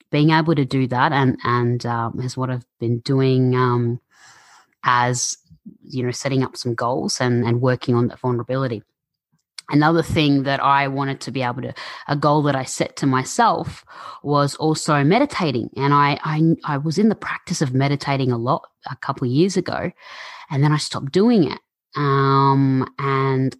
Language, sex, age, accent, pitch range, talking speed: English, female, 20-39, Australian, 125-150 Hz, 180 wpm